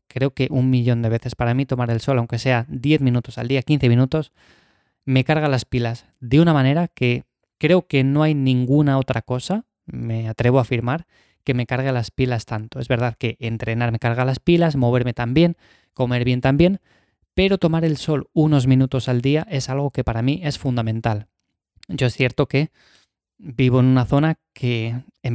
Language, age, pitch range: Spanish, 20-39, 120-140 Hz